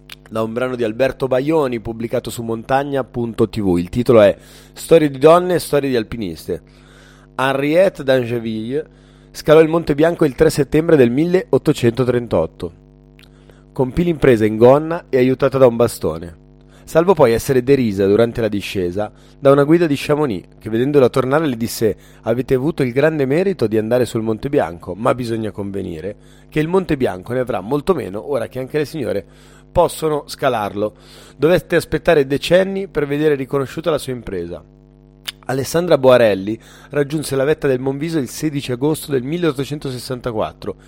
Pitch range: 110-145 Hz